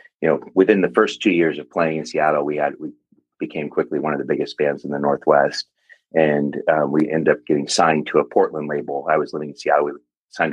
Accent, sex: American, male